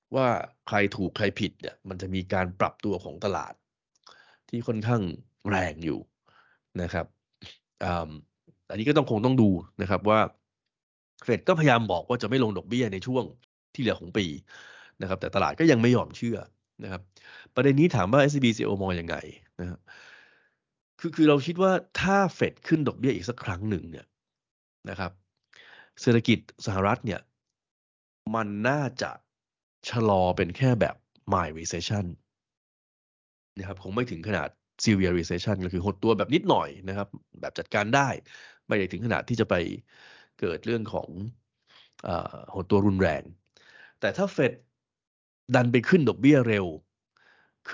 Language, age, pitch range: Thai, 20-39, 95-125 Hz